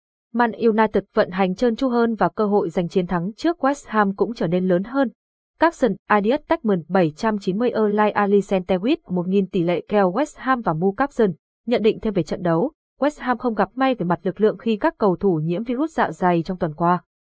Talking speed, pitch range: 215 wpm, 185-240 Hz